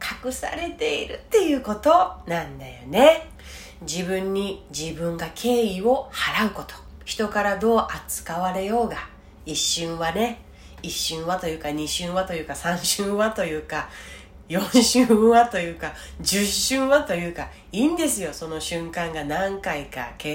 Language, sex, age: Japanese, female, 30-49